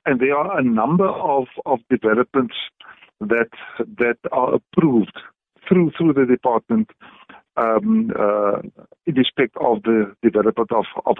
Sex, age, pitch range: male, 50-69, 115-170 Hz